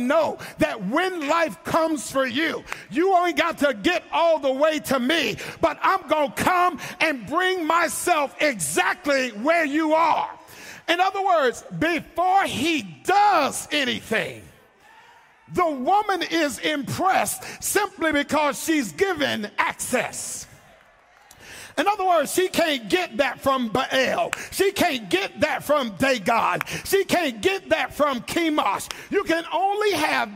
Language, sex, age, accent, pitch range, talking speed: English, male, 50-69, American, 245-335 Hz, 135 wpm